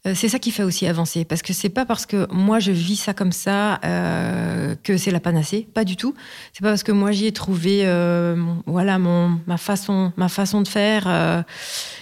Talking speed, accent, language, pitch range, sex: 220 wpm, French, French, 170-210 Hz, female